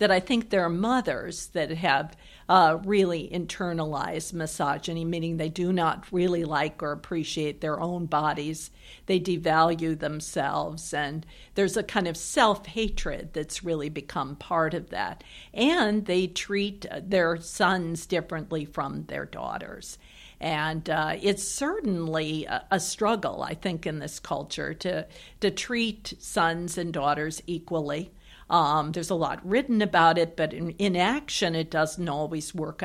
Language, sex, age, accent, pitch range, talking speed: English, female, 50-69, American, 160-195 Hz, 145 wpm